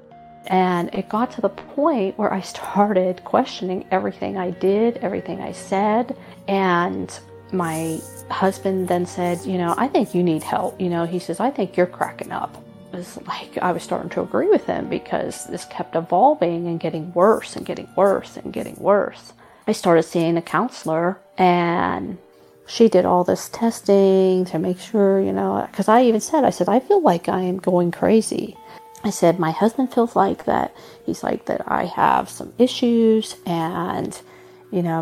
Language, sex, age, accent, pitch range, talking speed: English, female, 40-59, American, 175-220 Hz, 180 wpm